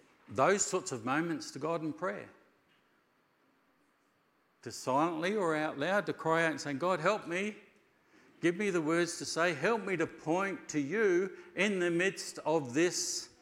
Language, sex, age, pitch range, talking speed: English, male, 50-69, 125-195 Hz, 170 wpm